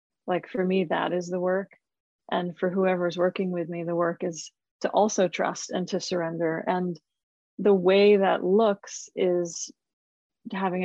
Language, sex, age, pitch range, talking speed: English, female, 30-49, 175-195 Hz, 160 wpm